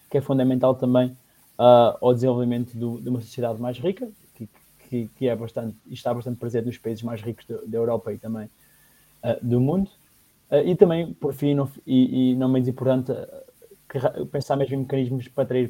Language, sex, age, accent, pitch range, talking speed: Portuguese, male, 20-39, Brazilian, 115-130 Hz, 195 wpm